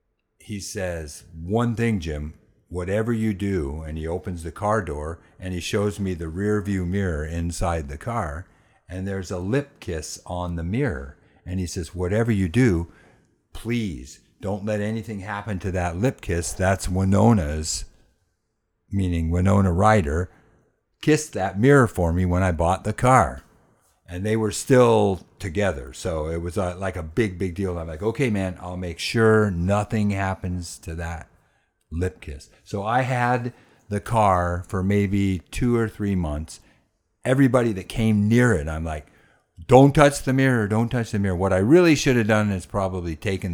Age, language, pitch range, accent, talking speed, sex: 50-69, English, 90-110 Hz, American, 170 wpm, male